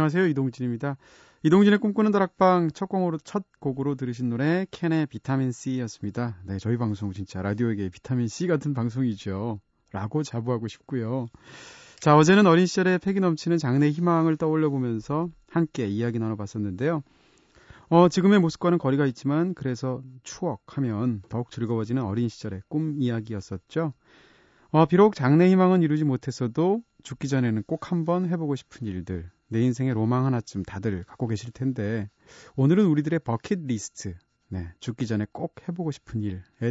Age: 30-49